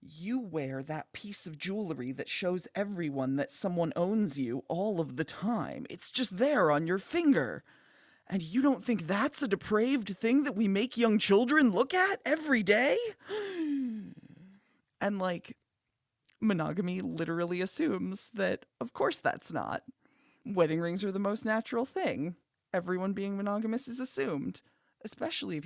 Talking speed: 150 wpm